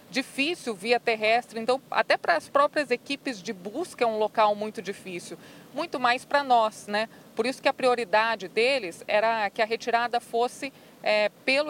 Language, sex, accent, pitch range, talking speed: Portuguese, female, Brazilian, 205-240 Hz, 175 wpm